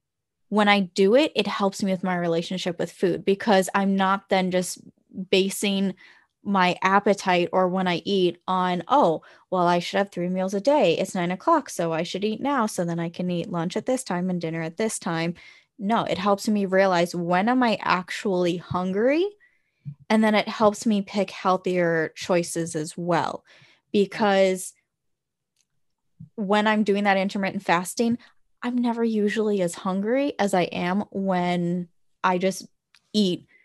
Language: English